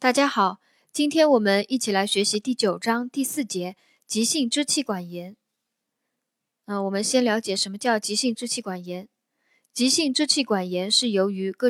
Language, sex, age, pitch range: Chinese, female, 20-39, 195-255 Hz